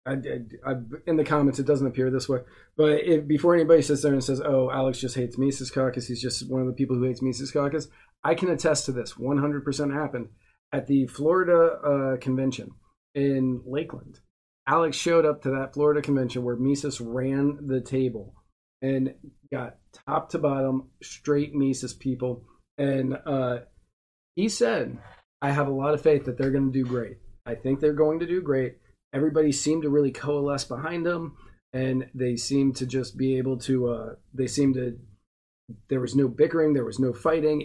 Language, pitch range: English, 125-150 Hz